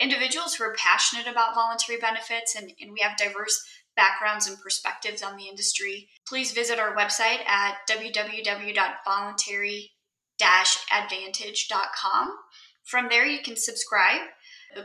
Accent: American